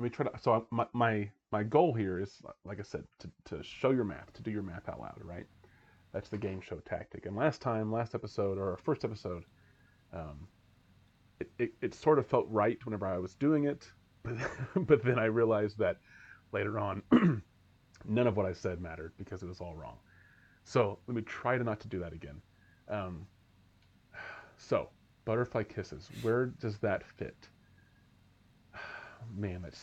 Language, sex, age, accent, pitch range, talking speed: English, male, 30-49, American, 95-125 Hz, 185 wpm